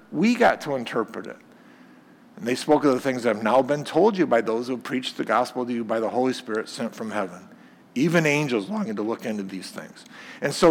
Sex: male